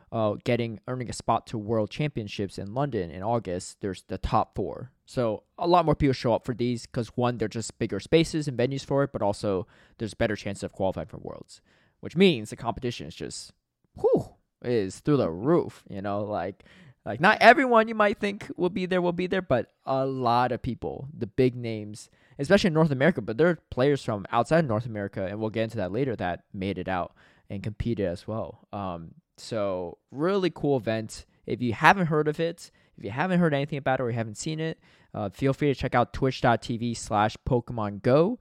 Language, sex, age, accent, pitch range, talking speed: English, male, 20-39, American, 100-135 Hz, 215 wpm